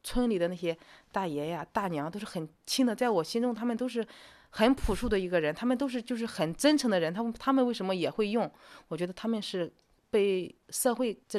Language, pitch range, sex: Chinese, 175-230 Hz, female